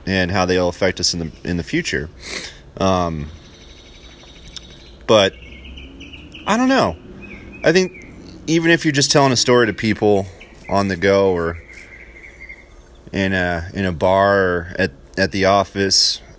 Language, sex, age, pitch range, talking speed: English, male, 30-49, 85-105 Hz, 145 wpm